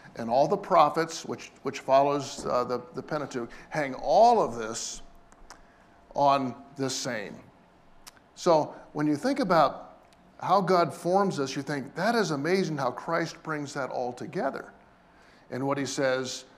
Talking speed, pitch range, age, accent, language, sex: 150 wpm, 130-165 Hz, 50-69, American, English, male